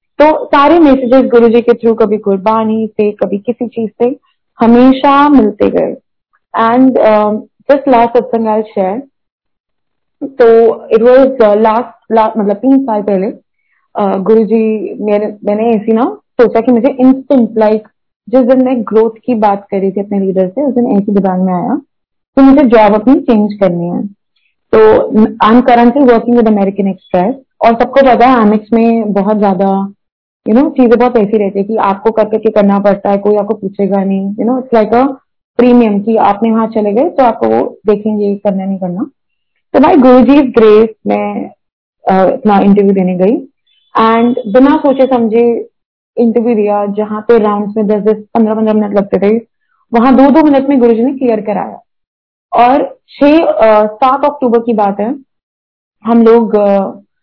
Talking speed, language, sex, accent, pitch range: 115 wpm, Hindi, female, native, 210-255 Hz